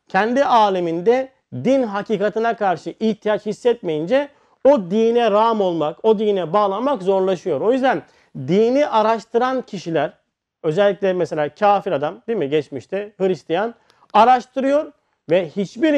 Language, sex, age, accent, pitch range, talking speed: Turkish, male, 50-69, native, 190-240 Hz, 115 wpm